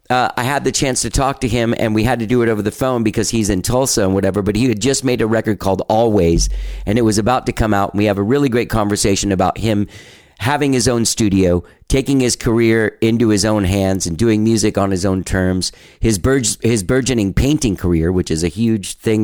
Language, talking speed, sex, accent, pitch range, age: English, 245 wpm, male, American, 100-125 Hz, 40-59